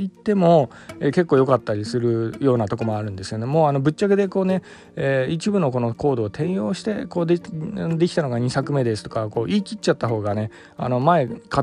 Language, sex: Japanese, male